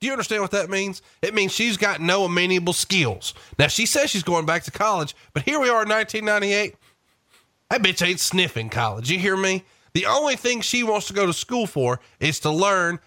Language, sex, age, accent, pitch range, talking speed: English, male, 30-49, American, 145-200 Hz, 220 wpm